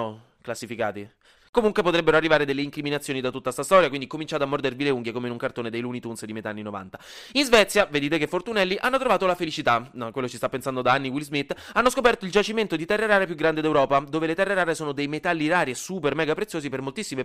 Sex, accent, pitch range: male, native, 125-180 Hz